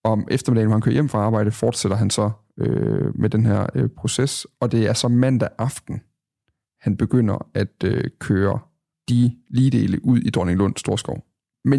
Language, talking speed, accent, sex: Danish, 180 wpm, native, male